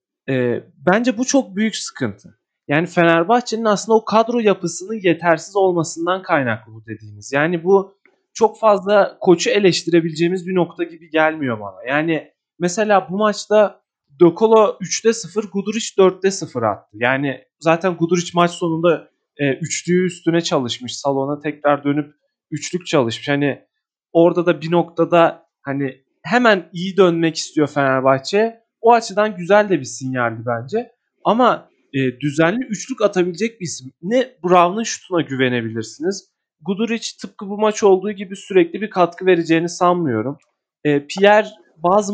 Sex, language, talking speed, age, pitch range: male, Turkish, 135 wpm, 30-49, 150-210 Hz